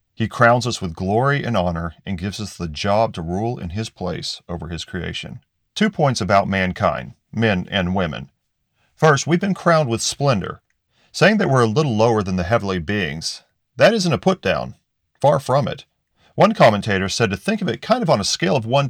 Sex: male